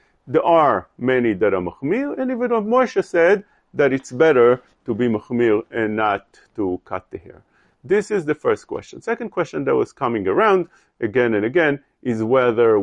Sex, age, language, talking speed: male, 40-59, English, 180 wpm